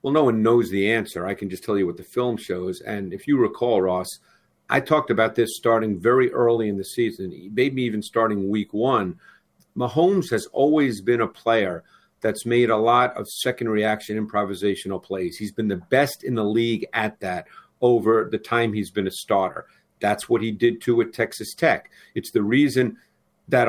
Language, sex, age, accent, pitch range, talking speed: English, male, 50-69, American, 110-135 Hz, 200 wpm